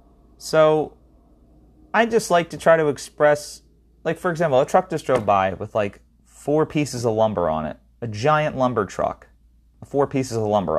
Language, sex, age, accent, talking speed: English, male, 30-49, American, 185 wpm